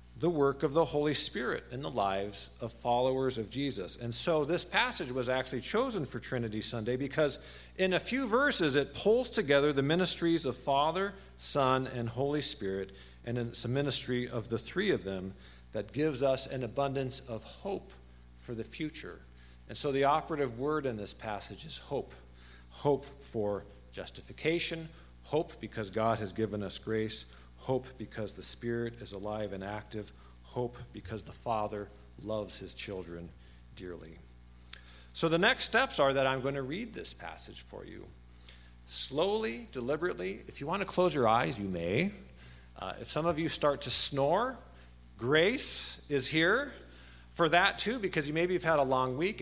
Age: 50-69